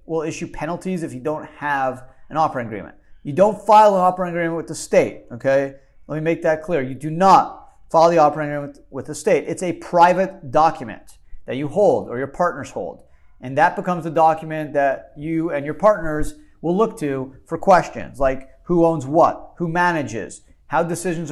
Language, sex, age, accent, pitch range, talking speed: English, male, 40-59, American, 140-175 Hz, 195 wpm